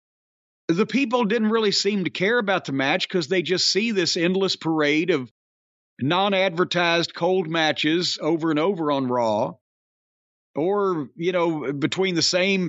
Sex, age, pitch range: male, 50-69, 160-210 Hz